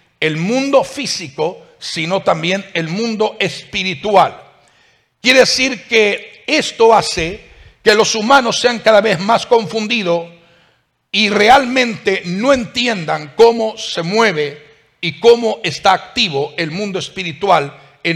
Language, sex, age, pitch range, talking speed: English, male, 60-79, 170-220 Hz, 120 wpm